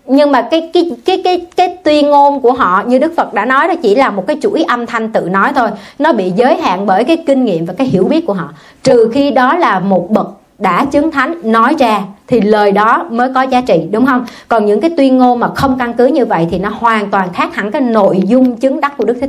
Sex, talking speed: male, 270 wpm